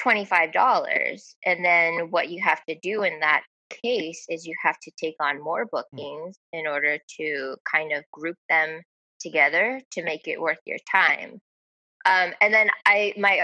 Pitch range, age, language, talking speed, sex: 155-185 Hz, 20-39, English, 160 wpm, female